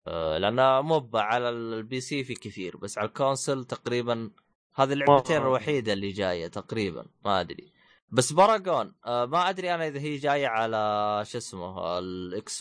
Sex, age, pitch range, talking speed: male, 20-39, 105-150 Hz, 150 wpm